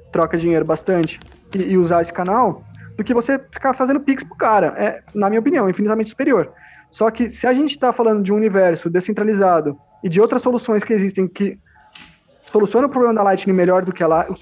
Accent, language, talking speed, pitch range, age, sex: Brazilian, Portuguese, 210 wpm, 170-220 Hz, 20-39, male